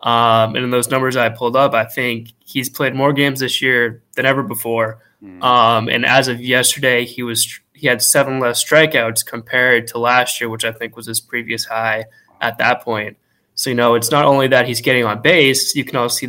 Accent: American